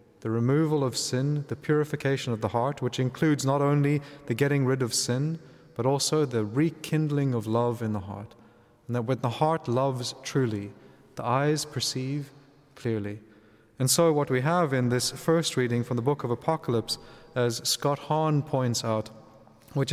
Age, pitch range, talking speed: 30-49, 120-150 Hz, 175 wpm